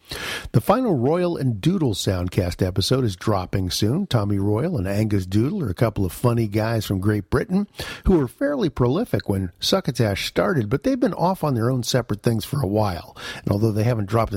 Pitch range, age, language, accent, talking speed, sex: 100-125 Hz, 50-69, English, American, 200 wpm, male